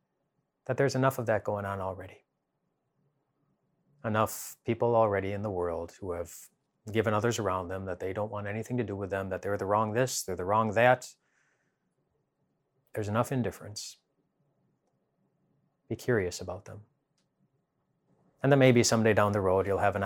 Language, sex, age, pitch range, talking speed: English, male, 30-49, 95-125 Hz, 165 wpm